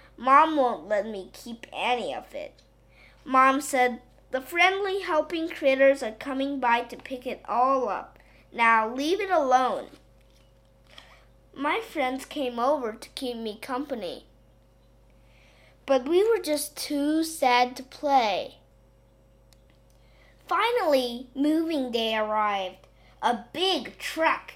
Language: Chinese